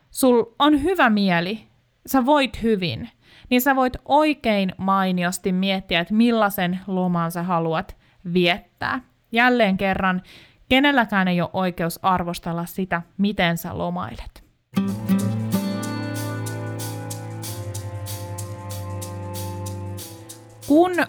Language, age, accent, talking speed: Finnish, 20-39, native, 90 wpm